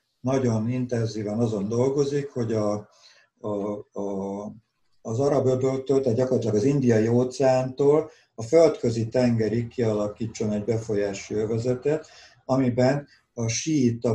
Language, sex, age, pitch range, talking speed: Hungarian, male, 60-79, 105-130 Hz, 105 wpm